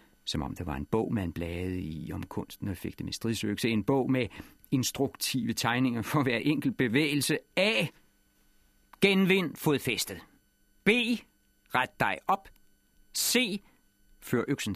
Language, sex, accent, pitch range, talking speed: Danish, male, native, 100-150 Hz, 140 wpm